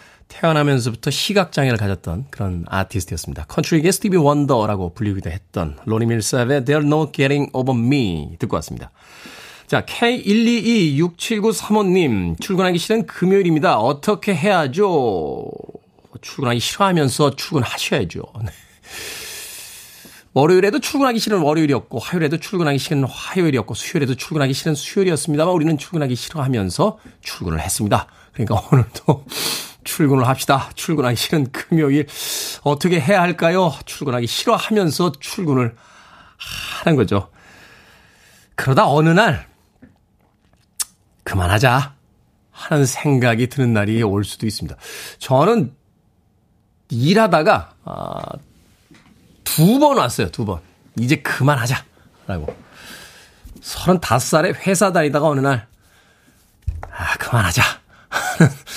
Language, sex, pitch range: Korean, male, 110-170 Hz